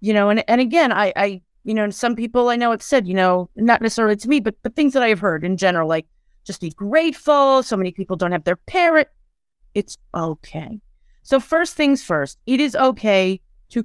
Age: 30-49